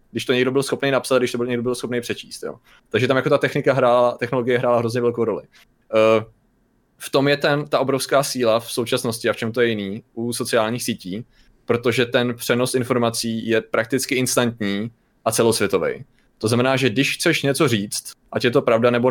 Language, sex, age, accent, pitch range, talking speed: Czech, male, 20-39, native, 115-130 Hz, 205 wpm